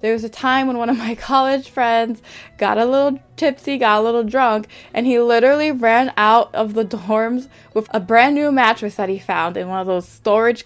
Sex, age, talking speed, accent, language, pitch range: female, 10-29, 220 wpm, American, English, 190-235 Hz